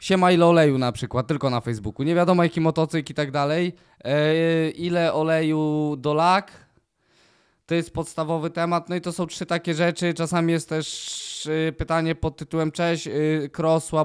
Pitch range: 145-165 Hz